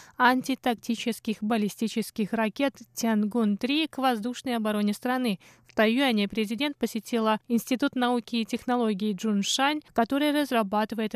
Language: Russian